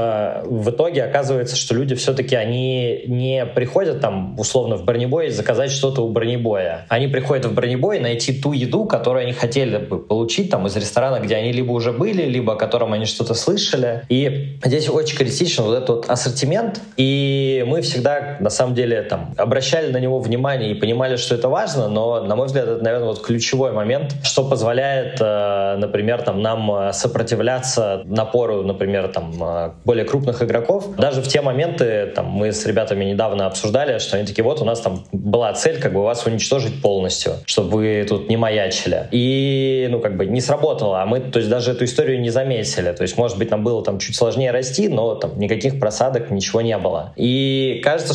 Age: 20-39